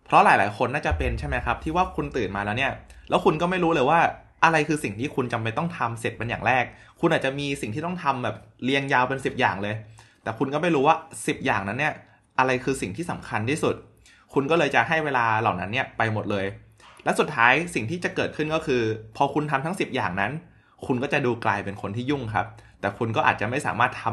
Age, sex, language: 20-39, male, Thai